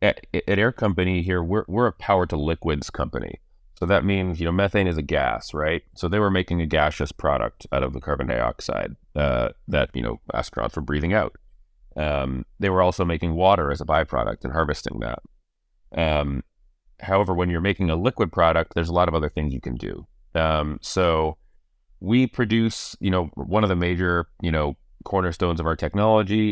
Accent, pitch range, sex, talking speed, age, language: American, 75-90 Hz, male, 195 wpm, 30-49, English